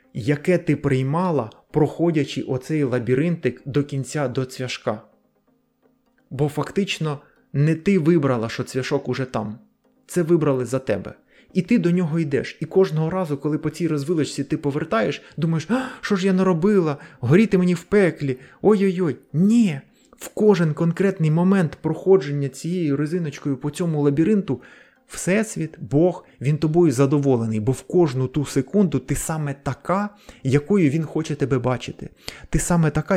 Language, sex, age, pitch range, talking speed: Ukrainian, male, 20-39, 135-180 Hz, 145 wpm